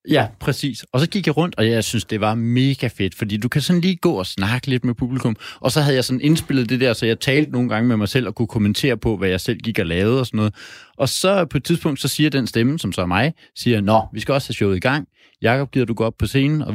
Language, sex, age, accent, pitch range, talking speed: Danish, male, 30-49, native, 110-135 Hz, 305 wpm